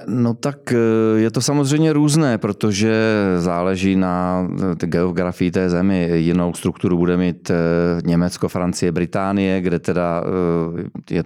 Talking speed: 115 wpm